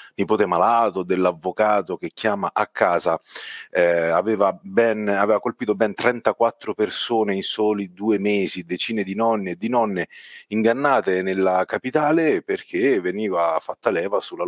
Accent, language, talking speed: native, Italian, 135 wpm